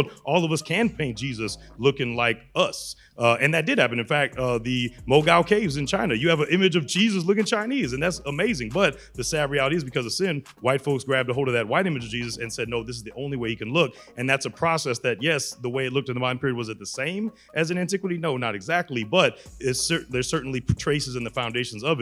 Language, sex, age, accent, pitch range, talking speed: English, male, 30-49, American, 120-145 Hz, 265 wpm